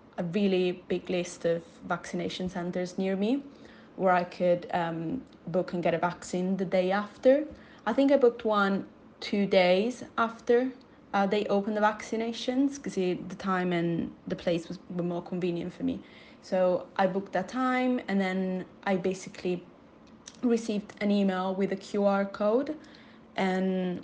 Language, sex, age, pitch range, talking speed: English, female, 20-39, 180-215 Hz, 155 wpm